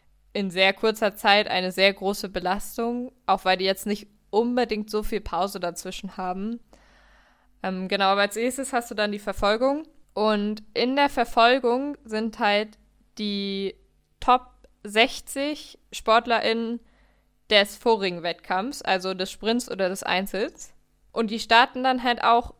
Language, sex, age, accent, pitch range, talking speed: German, female, 20-39, German, 195-230 Hz, 145 wpm